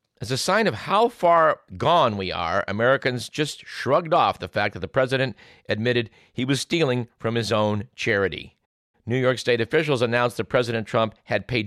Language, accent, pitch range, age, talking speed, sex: English, American, 105-130 Hz, 50-69, 185 wpm, male